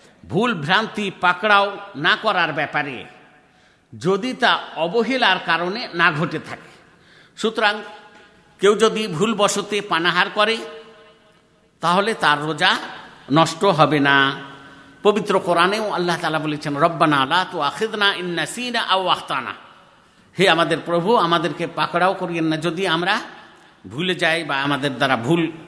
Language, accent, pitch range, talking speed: Bengali, native, 150-200 Hz, 110 wpm